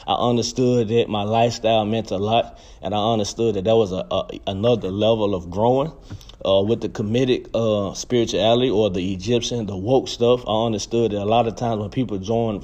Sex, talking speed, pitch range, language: male, 185 wpm, 100-120 Hz, English